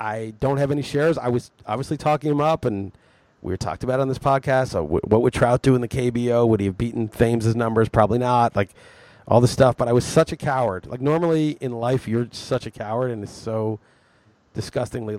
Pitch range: 115-135 Hz